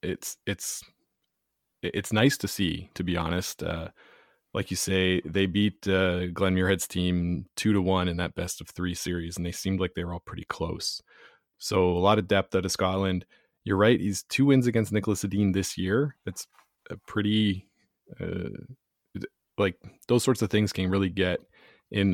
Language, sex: English, male